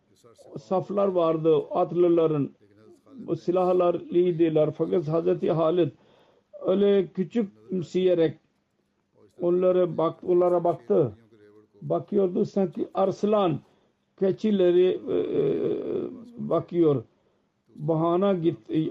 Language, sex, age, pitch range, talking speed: Turkish, male, 50-69, 160-185 Hz, 75 wpm